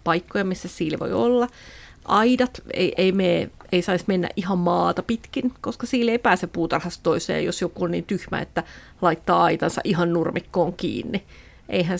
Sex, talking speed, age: female, 165 wpm, 30-49